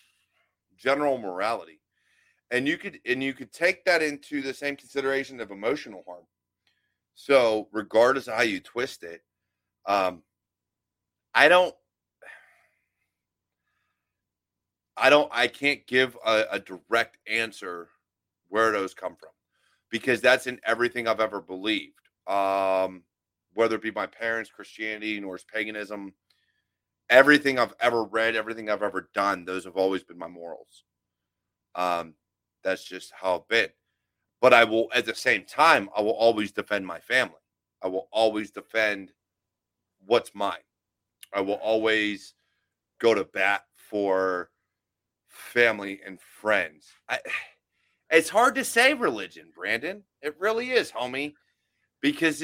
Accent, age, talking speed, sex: American, 30-49, 135 wpm, male